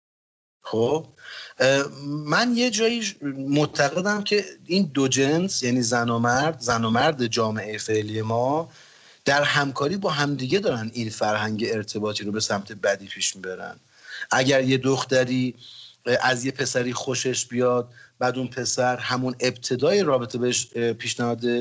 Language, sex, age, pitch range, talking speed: Persian, male, 40-59, 120-155 Hz, 135 wpm